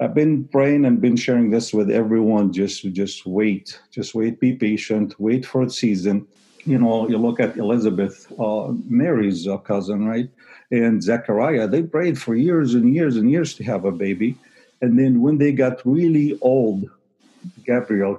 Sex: male